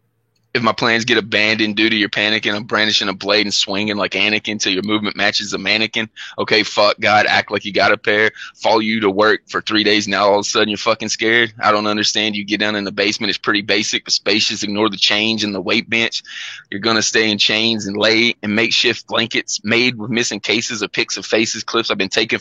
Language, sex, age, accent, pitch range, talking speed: English, male, 20-39, American, 100-110 Hz, 245 wpm